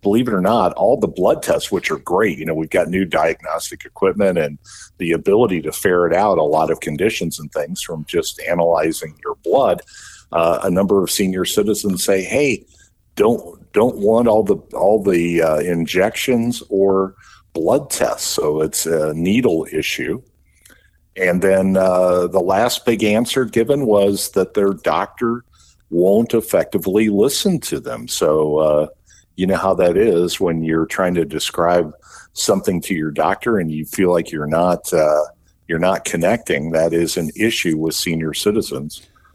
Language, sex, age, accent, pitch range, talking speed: English, male, 50-69, American, 80-100 Hz, 170 wpm